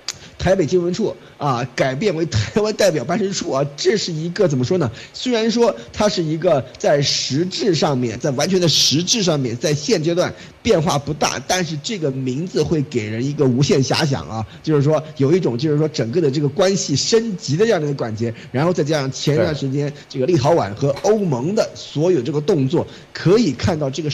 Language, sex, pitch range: Chinese, male, 135-185 Hz